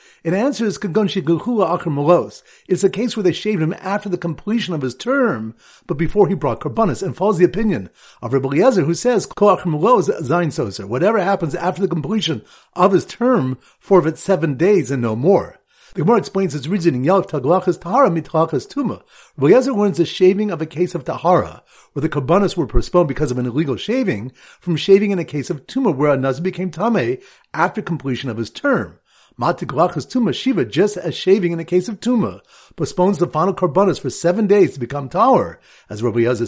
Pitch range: 150-200 Hz